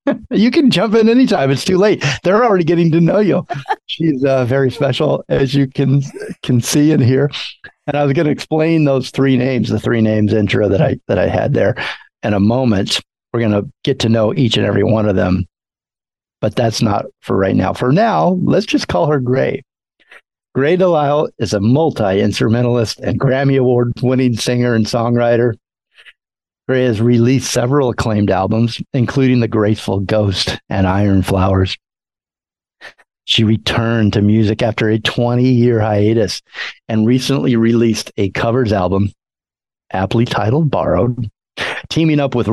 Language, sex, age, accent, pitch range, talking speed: English, male, 50-69, American, 110-140 Hz, 165 wpm